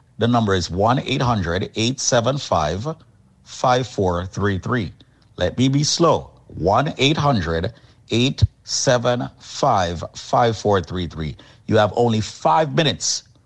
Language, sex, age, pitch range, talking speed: English, male, 50-69, 95-130 Hz, 60 wpm